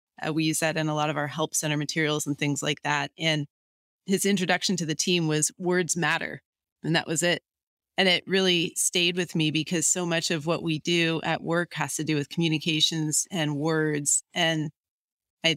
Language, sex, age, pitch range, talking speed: English, female, 30-49, 150-180 Hz, 205 wpm